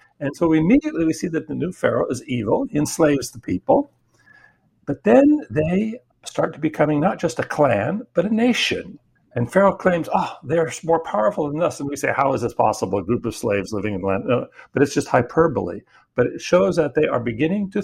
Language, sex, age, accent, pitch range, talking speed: English, male, 60-79, American, 130-195 Hz, 220 wpm